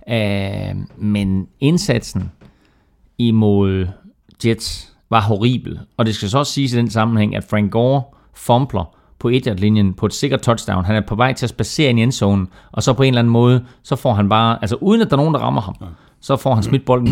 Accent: native